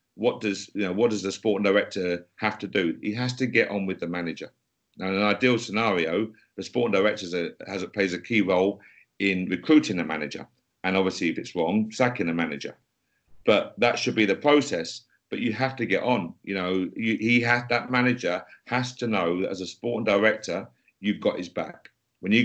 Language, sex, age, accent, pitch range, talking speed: English, male, 50-69, British, 90-110 Hz, 210 wpm